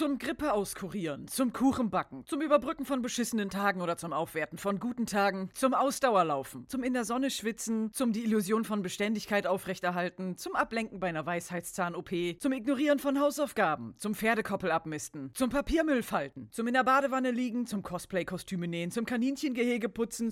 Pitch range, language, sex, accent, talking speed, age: 180-245 Hz, German, female, German, 170 wpm, 40-59